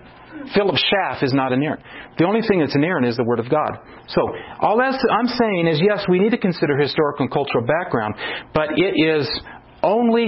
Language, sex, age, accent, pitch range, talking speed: English, male, 40-59, American, 165-235 Hz, 210 wpm